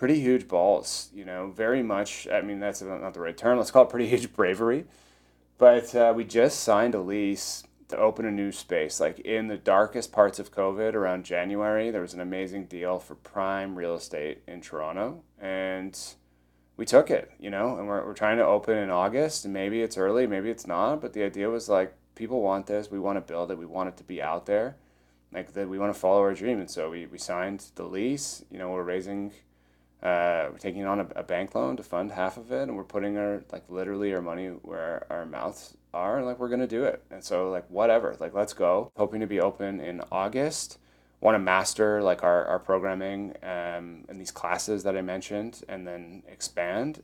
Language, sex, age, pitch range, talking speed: English, male, 30-49, 90-105 Hz, 220 wpm